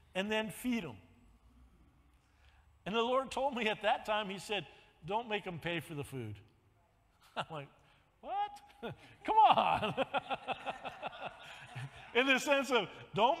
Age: 50-69